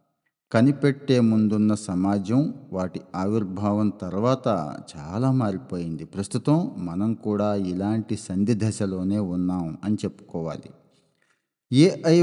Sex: male